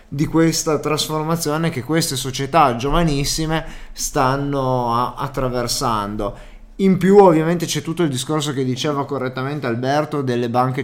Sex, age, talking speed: male, 20-39, 120 wpm